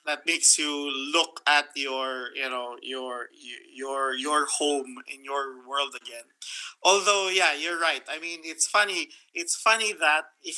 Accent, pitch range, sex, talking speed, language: Filipino, 135-165 Hz, male, 160 wpm, English